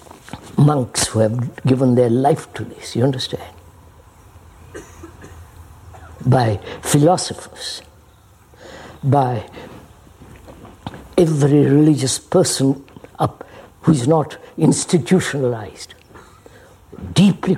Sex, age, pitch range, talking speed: female, 60-79, 90-140 Hz, 70 wpm